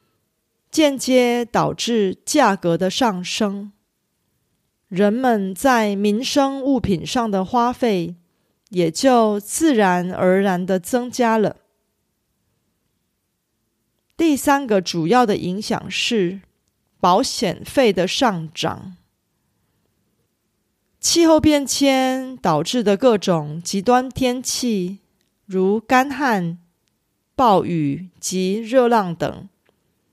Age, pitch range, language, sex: 30-49, 185-250 Hz, Korean, female